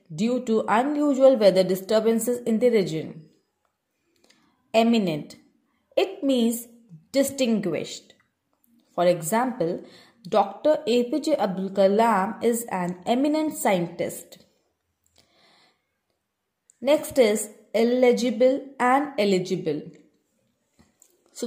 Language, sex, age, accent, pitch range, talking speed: English, female, 20-39, Indian, 190-270 Hz, 80 wpm